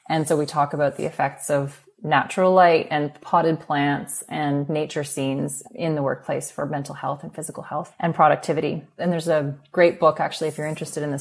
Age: 20-39